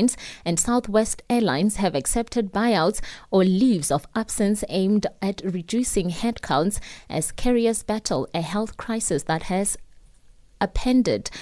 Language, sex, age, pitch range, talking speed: English, female, 20-39, 190-240 Hz, 120 wpm